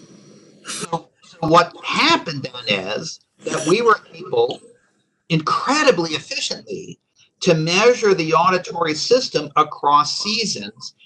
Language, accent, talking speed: English, American, 100 wpm